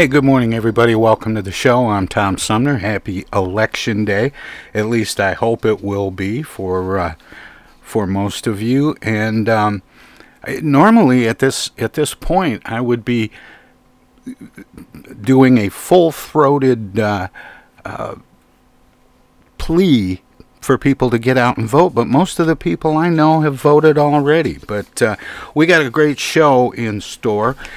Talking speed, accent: 150 wpm, American